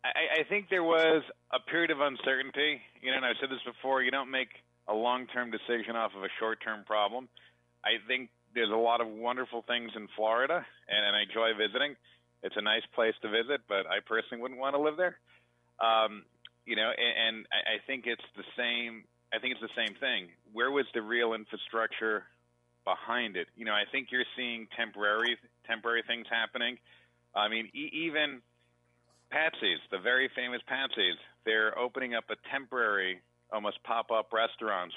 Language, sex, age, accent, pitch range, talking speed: English, male, 40-59, American, 95-120 Hz, 180 wpm